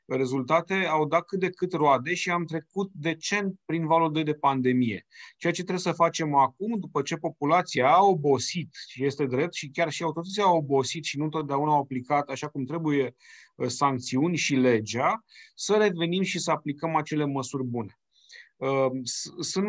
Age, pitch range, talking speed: 30-49, 140-170 Hz, 175 wpm